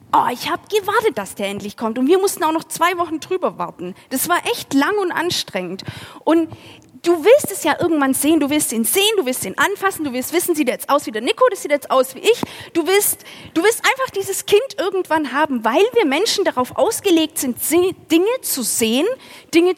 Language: German